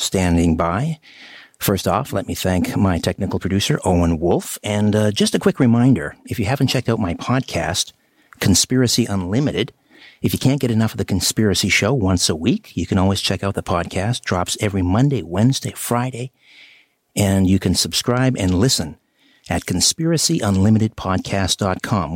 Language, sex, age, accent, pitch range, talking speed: English, male, 60-79, American, 95-125 Hz, 160 wpm